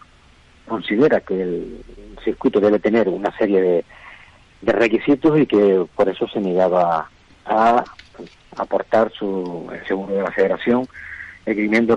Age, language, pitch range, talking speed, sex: 40-59, Spanish, 90-110 Hz, 125 wpm, male